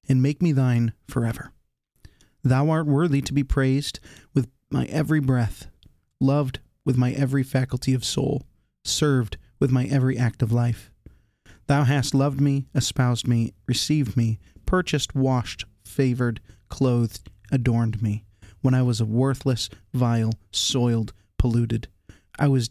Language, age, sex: English, 30-49, male